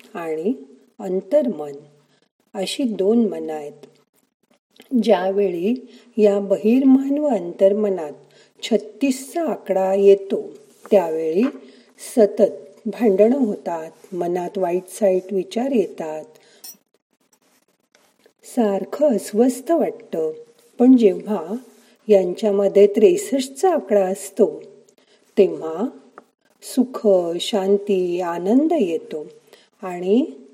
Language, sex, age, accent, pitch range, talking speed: Marathi, female, 50-69, native, 190-250 Hz, 70 wpm